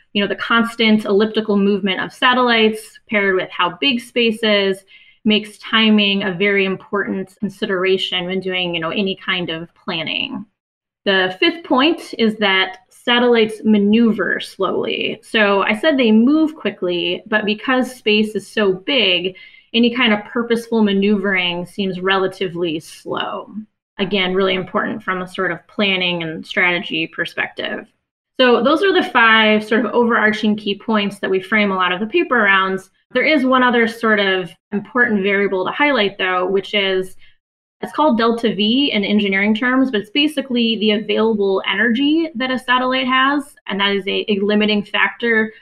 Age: 20-39